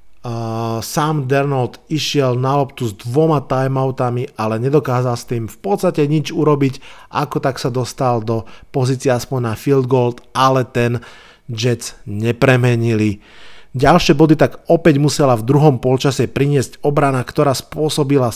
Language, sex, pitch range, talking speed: Slovak, male, 120-150 Hz, 140 wpm